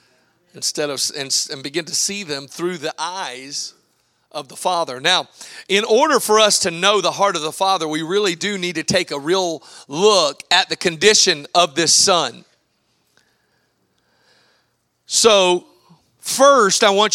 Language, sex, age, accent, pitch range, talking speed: English, male, 40-59, American, 185-260 Hz, 155 wpm